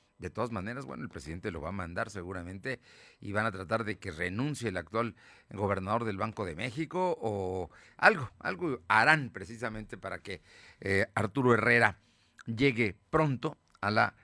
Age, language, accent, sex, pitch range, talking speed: 50-69, Spanish, Mexican, male, 100-150 Hz, 160 wpm